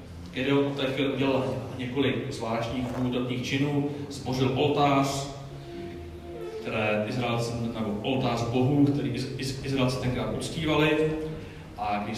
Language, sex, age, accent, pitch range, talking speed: Czech, male, 40-59, native, 115-155 Hz, 95 wpm